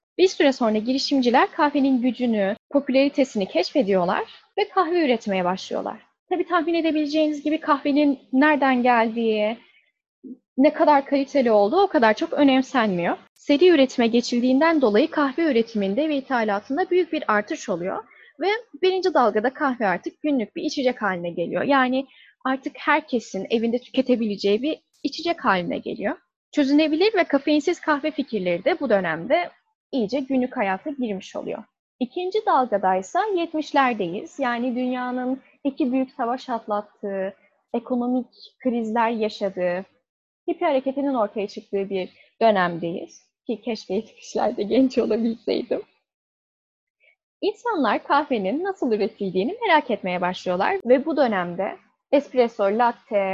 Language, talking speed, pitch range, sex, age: Turkish, 120 wpm, 215-305 Hz, female, 10-29